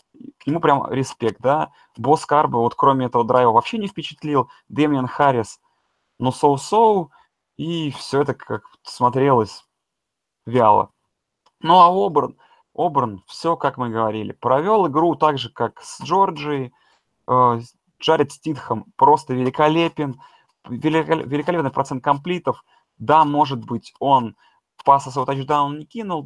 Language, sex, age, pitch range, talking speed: Russian, male, 20-39, 125-160 Hz, 130 wpm